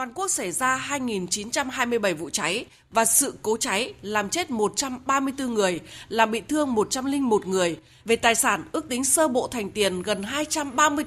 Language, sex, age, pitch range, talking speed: Vietnamese, female, 20-39, 205-285 Hz, 170 wpm